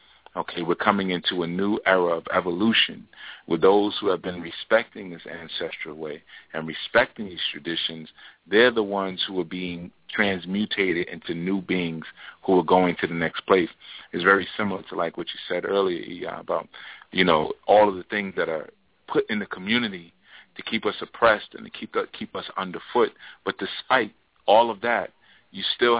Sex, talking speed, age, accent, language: male, 180 wpm, 40-59, American, English